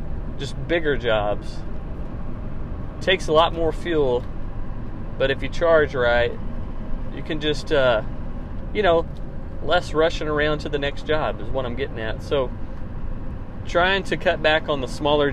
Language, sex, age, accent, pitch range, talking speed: English, male, 30-49, American, 110-150 Hz, 155 wpm